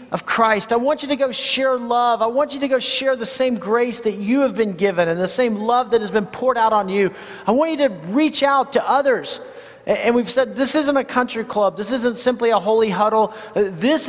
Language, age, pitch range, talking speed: English, 40-59, 195-245 Hz, 245 wpm